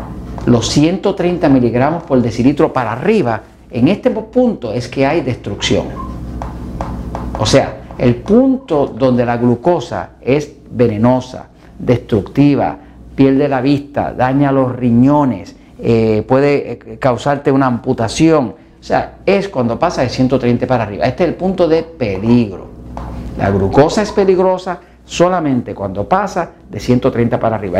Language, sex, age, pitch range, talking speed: Spanish, male, 50-69, 110-160 Hz, 130 wpm